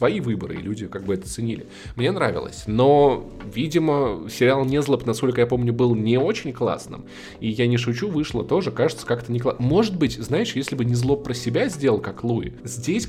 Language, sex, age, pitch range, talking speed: Russian, male, 20-39, 115-145 Hz, 195 wpm